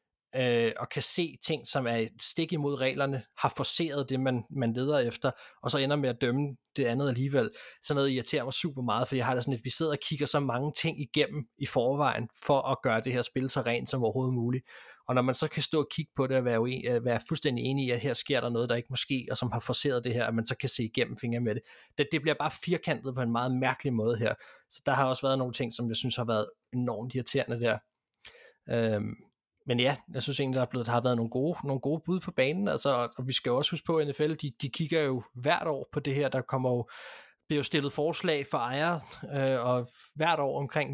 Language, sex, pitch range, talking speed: Danish, male, 120-145 Hz, 260 wpm